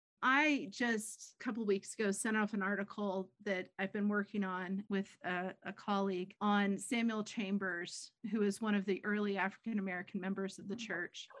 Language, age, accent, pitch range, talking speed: English, 40-59, American, 200-230 Hz, 180 wpm